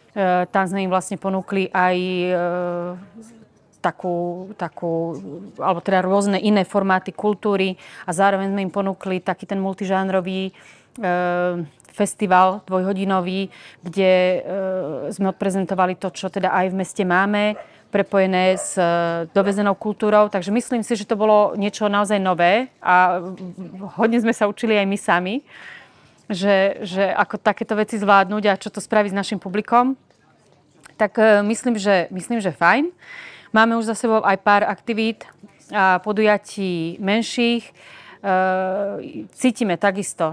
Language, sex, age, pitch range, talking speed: Slovak, female, 30-49, 185-205 Hz, 130 wpm